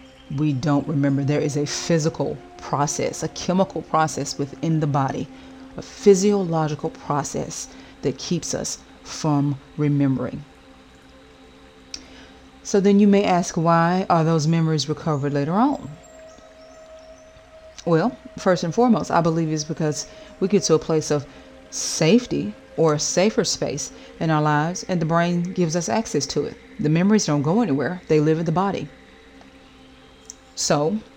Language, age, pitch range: English, 30-49, 140-175 Hz